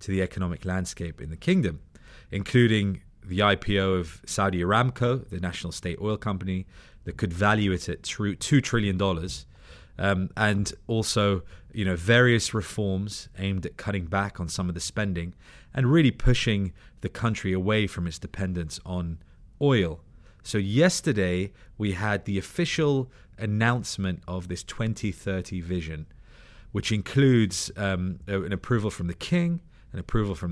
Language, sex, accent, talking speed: English, male, British, 145 wpm